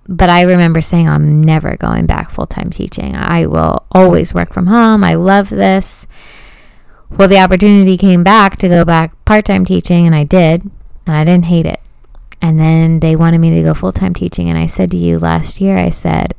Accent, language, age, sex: American, English, 20-39, female